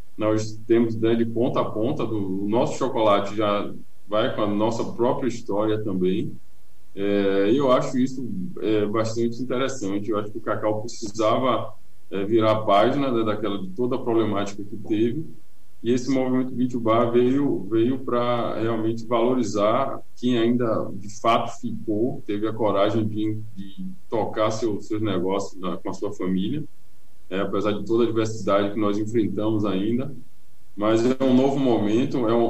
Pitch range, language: 105-120 Hz, Portuguese